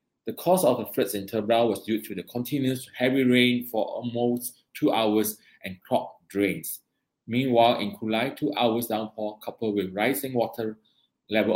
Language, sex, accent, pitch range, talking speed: English, male, Malaysian, 100-130 Hz, 165 wpm